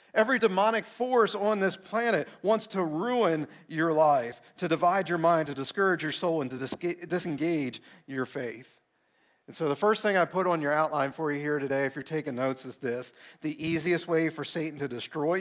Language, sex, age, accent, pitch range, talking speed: English, male, 50-69, American, 135-175 Hz, 200 wpm